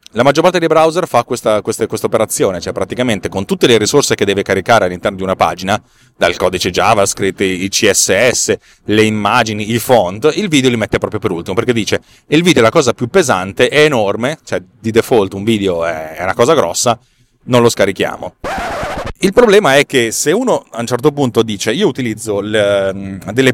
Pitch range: 100-130 Hz